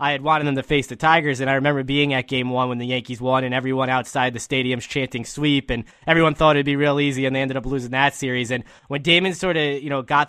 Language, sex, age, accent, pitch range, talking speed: English, male, 20-39, American, 130-160 Hz, 280 wpm